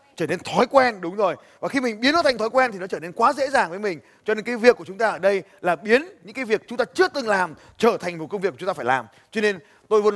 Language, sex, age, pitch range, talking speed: Vietnamese, male, 20-39, 160-235 Hz, 325 wpm